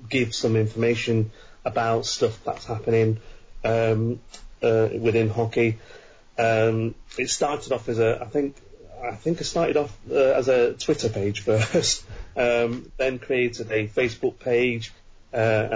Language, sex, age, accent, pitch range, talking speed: English, male, 30-49, British, 110-120 Hz, 140 wpm